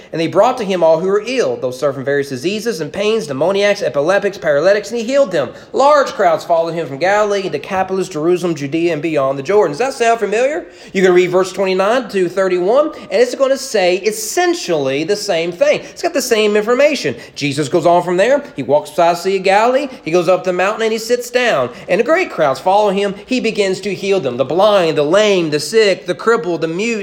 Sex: male